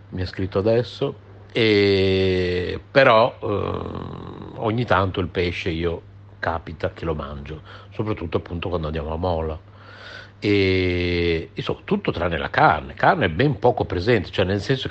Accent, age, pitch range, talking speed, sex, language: native, 60-79, 95-115 Hz, 150 wpm, male, Italian